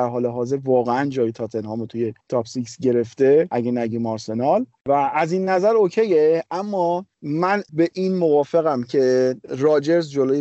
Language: Persian